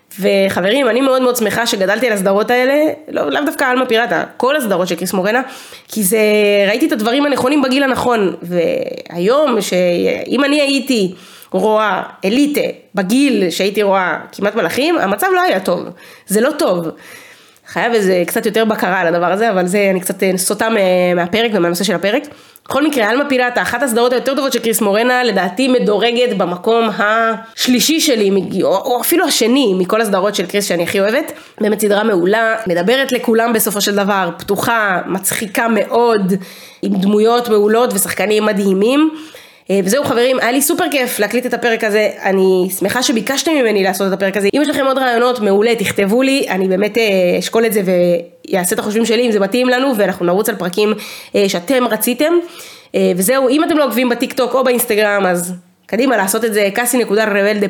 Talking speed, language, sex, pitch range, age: 170 wpm, Hebrew, female, 200-250 Hz, 20-39